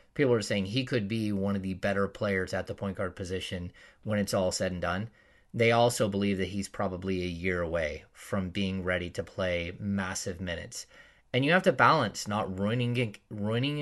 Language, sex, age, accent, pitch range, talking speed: English, male, 30-49, American, 95-115 Hz, 200 wpm